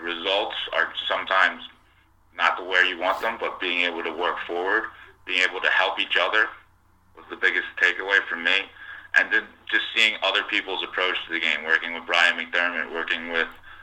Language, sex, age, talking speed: English, male, 30-49, 185 wpm